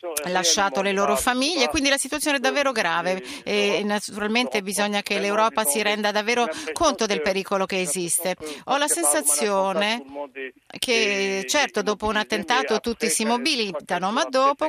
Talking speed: 145 wpm